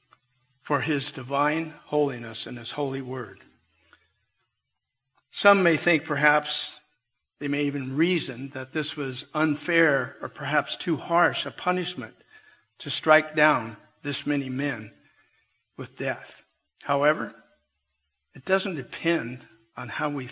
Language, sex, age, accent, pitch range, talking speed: English, male, 50-69, American, 130-165 Hz, 120 wpm